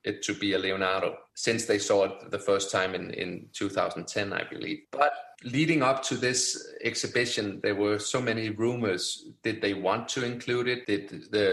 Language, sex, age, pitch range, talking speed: English, male, 30-49, 105-125 Hz, 185 wpm